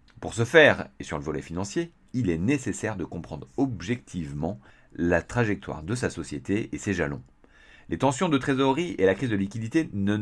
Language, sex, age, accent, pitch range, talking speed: French, male, 40-59, French, 85-125 Hz, 190 wpm